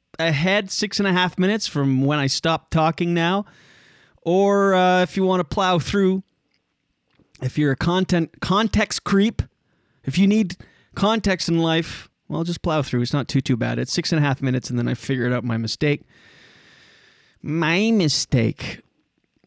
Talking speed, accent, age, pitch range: 175 wpm, American, 30-49, 145-195 Hz